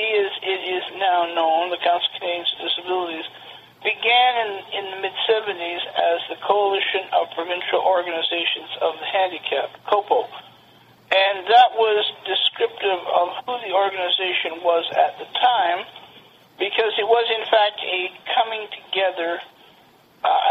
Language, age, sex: English, 50-69, male